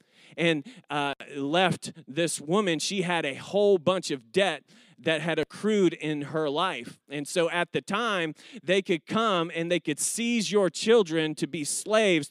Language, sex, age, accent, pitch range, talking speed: English, male, 30-49, American, 165-215 Hz, 170 wpm